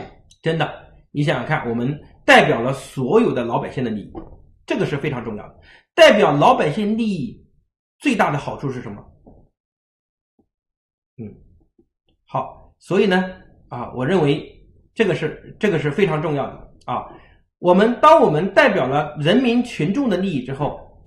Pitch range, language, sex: 145-220 Hz, Chinese, male